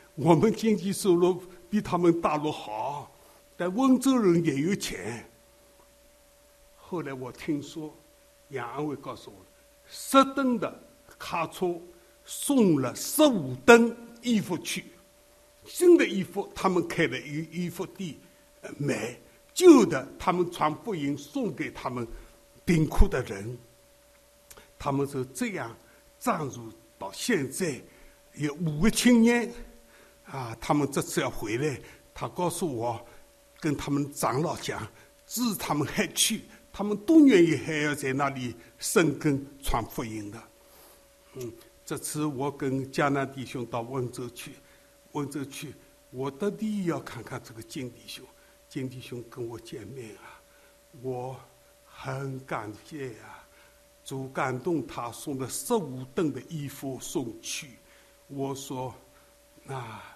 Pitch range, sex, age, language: 130-195 Hz, male, 60-79, English